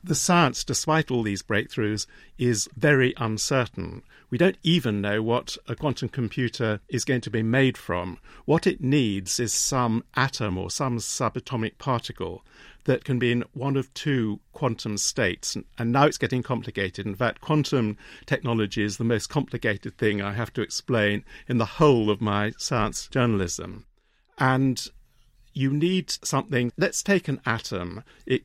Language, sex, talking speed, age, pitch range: English, male, 160 wpm, 50-69, 110-135 Hz